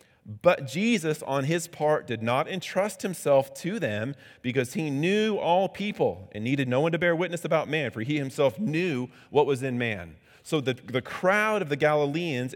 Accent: American